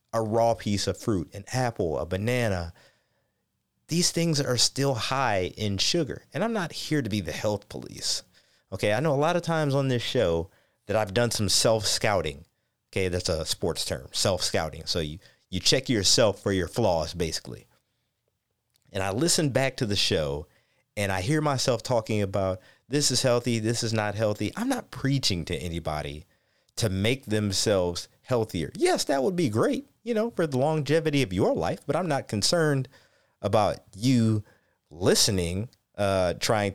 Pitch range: 100-155 Hz